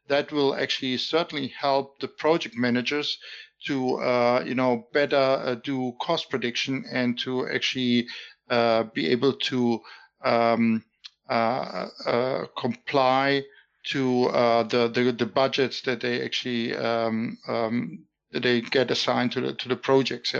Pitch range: 120-135 Hz